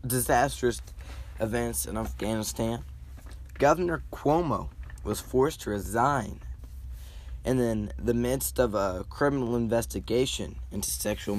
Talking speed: 105 wpm